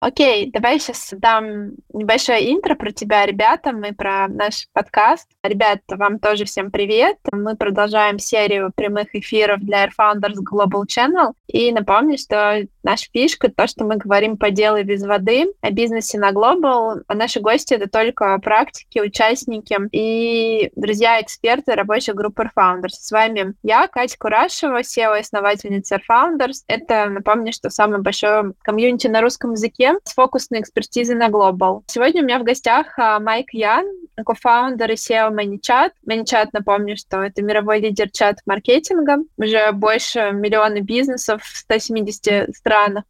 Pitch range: 205-240 Hz